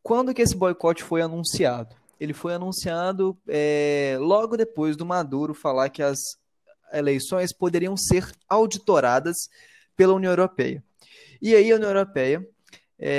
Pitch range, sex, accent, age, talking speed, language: 145-195 Hz, male, Brazilian, 20-39, 125 wpm, Portuguese